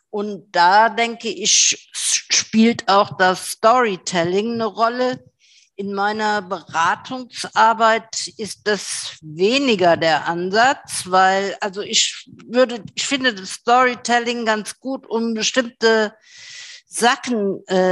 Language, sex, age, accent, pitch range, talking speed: German, female, 50-69, German, 195-240 Hz, 105 wpm